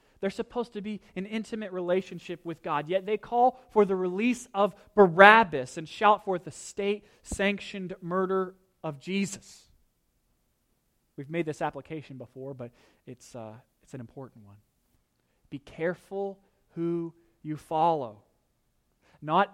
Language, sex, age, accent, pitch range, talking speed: English, male, 30-49, American, 155-205 Hz, 130 wpm